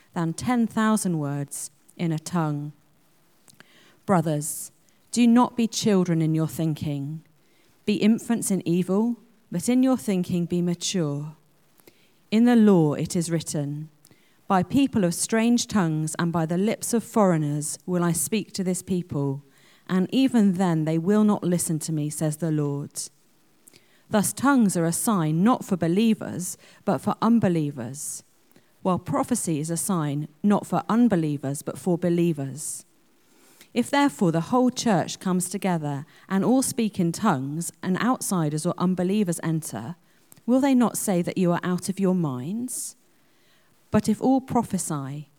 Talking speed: 150 wpm